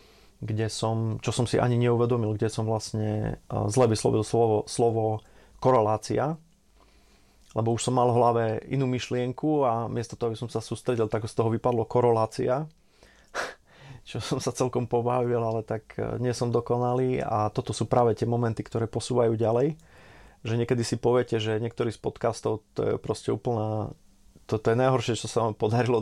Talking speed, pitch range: 170 wpm, 110-125 Hz